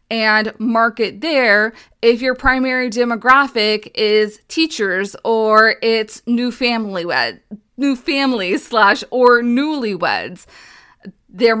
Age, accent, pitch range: 20-39, American, 210-265 Hz